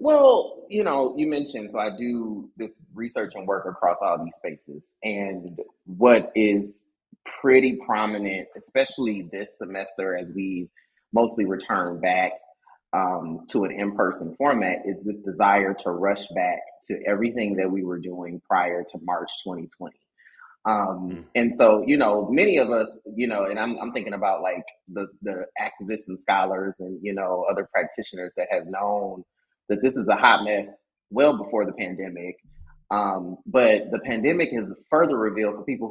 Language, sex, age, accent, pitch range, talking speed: English, male, 30-49, American, 95-135 Hz, 165 wpm